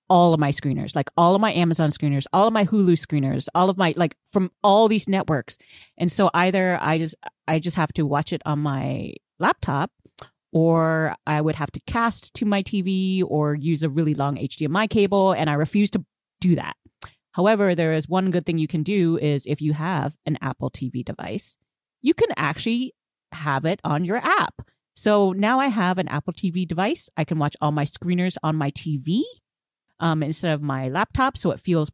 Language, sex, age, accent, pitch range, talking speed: English, female, 30-49, American, 145-185 Hz, 205 wpm